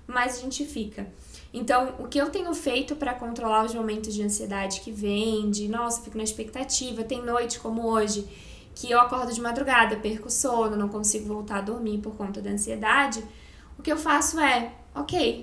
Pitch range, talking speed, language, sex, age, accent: 220-270 Hz, 190 wpm, Portuguese, female, 10-29, Brazilian